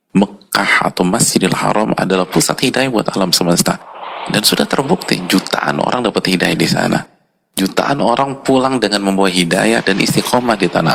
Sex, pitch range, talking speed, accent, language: male, 85-95 Hz, 155 wpm, native, Indonesian